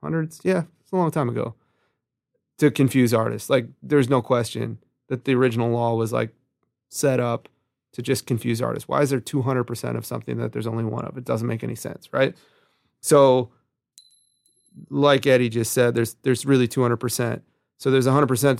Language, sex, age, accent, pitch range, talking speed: English, male, 30-49, American, 120-135 Hz, 175 wpm